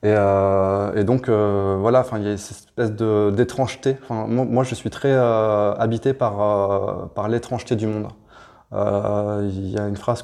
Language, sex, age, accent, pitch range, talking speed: French, male, 20-39, French, 95-115 Hz, 195 wpm